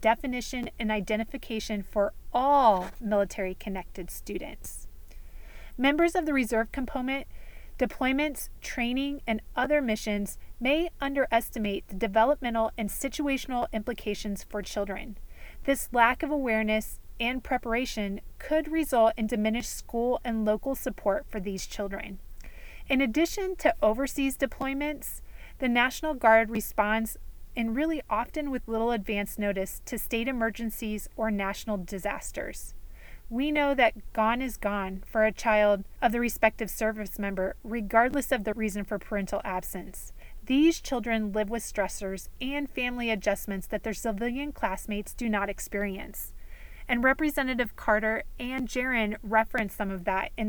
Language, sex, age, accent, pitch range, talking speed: English, female, 30-49, American, 210-260 Hz, 130 wpm